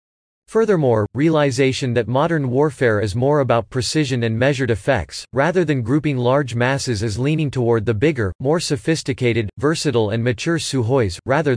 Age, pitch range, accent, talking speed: 40-59, 120-150 Hz, American, 150 wpm